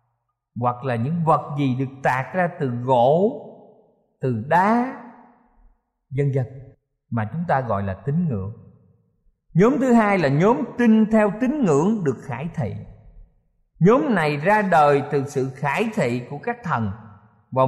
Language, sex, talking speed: Vietnamese, male, 155 wpm